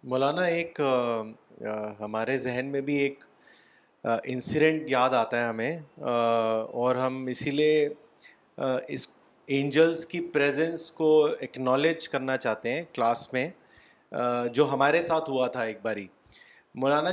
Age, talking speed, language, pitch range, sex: 30-49, 125 wpm, Urdu, 135-165 Hz, male